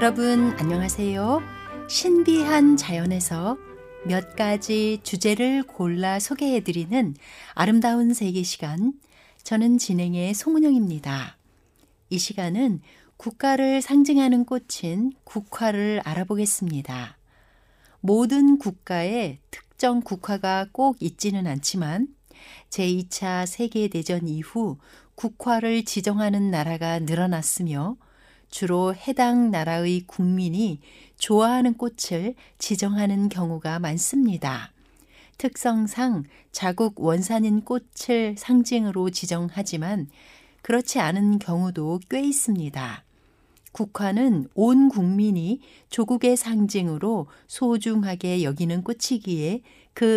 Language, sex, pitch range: Korean, female, 175-240 Hz